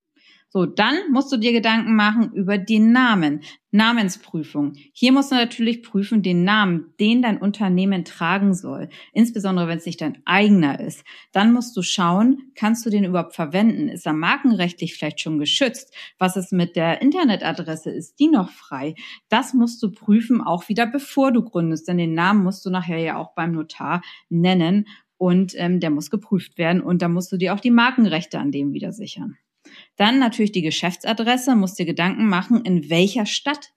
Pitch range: 170-230 Hz